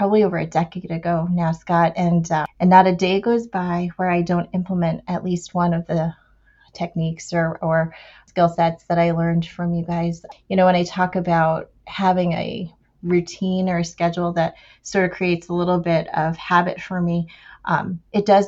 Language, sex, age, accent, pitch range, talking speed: English, female, 30-49, American, 170-185 Hz, 200 wpm